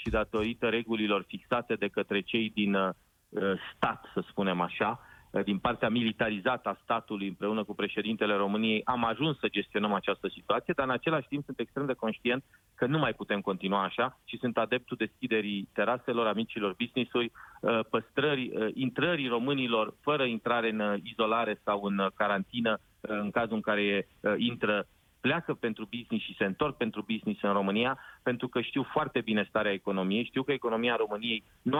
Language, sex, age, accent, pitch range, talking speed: Romanian, male, 30-49, native, 105-130 Hz, 160 wpm